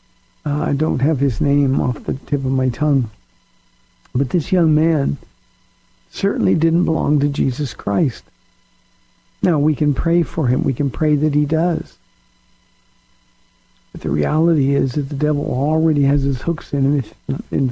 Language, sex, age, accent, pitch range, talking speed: English, male, 60-79, American, 125-155 Hz, 165 wpm